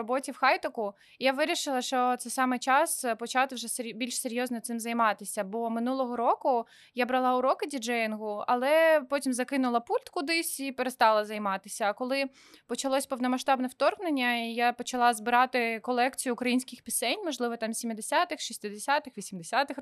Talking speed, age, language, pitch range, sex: 140 wpm, 20-39, Ukrainian, 225-270 Hz, female